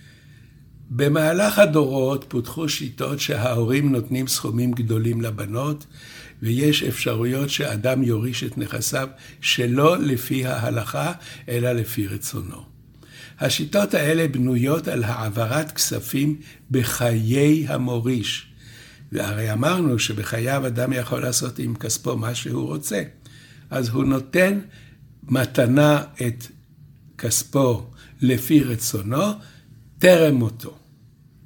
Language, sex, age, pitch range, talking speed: Hebrew, male, 60-79, 120-145 Hz, 95 wpm